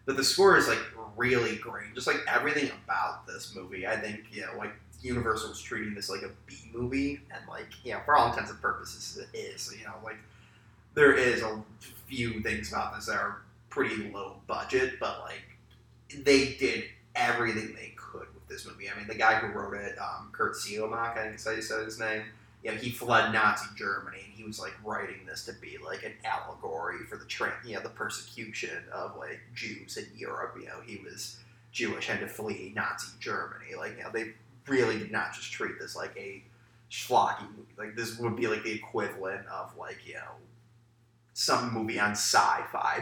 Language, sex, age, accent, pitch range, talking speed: English, male, 30-49, American, 110-120 Hz, 200 wpm